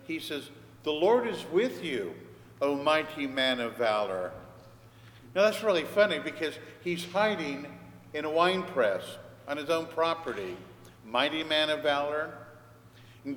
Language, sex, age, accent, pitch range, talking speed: English, male, 50-69, American, 125-165 Hz, 145 wpm